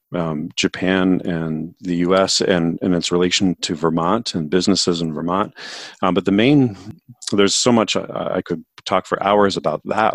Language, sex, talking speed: English, male, 175 wpm